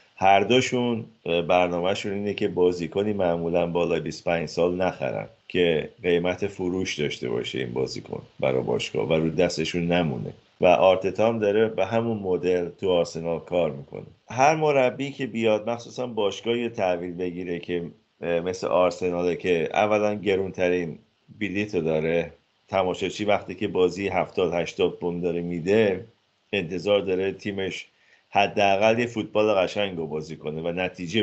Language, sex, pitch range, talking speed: Persian, male, 85-105 Hz, 135 wpm